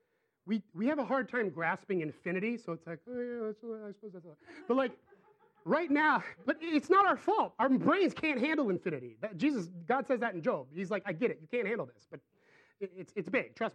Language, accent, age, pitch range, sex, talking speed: English, American, 30-49, 185-275 Hz, male, 240 wpm